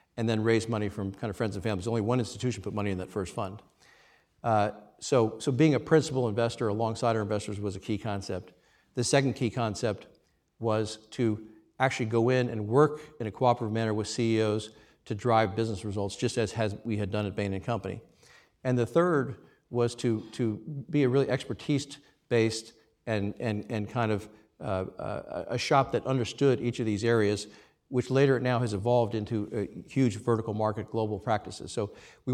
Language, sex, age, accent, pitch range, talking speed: English, male, 50-69, American, 105-120 Hz, 195 wpm